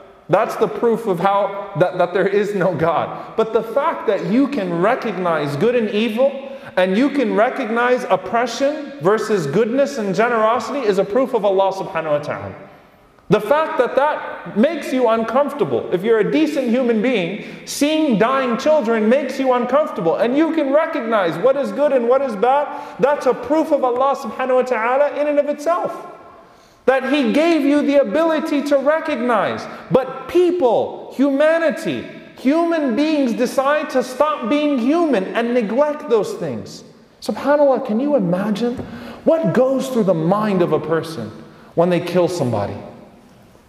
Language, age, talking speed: English, 30-49, 160 wpm